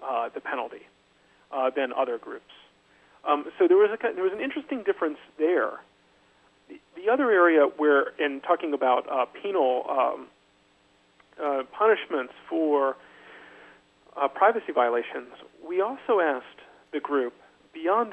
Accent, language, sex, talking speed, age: American, English, male, 135 wpm, 40-59